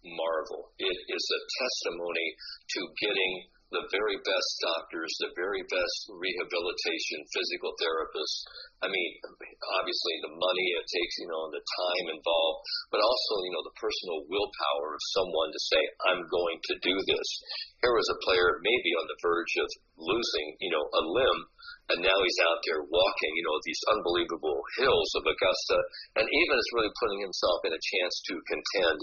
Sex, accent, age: male, American, 50-69